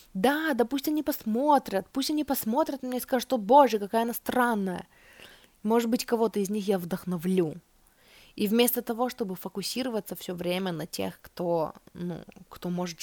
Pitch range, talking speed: 175-215 Hz, 170 wpm